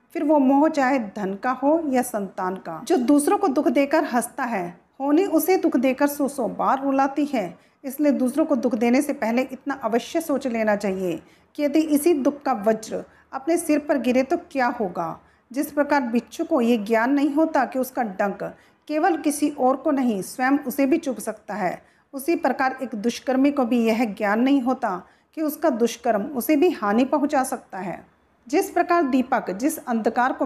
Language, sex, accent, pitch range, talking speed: Hindi, female, native, 225-295 Hz, 195 wpm